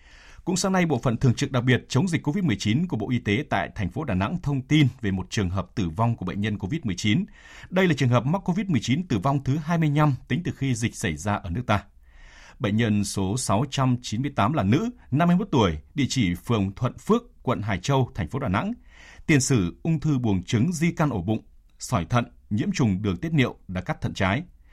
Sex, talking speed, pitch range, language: male, 225 wpm, 100-145 Hz, Vietnamese